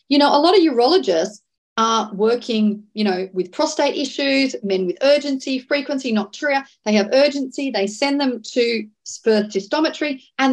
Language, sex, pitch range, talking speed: English, female, 205-285 Hz, 160 wpm